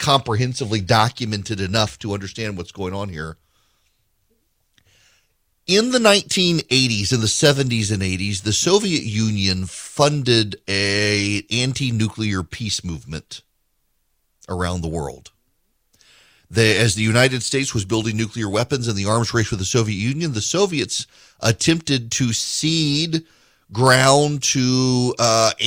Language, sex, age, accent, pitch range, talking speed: English, male, 40-59, American, 105-140 Hz, 125 wpm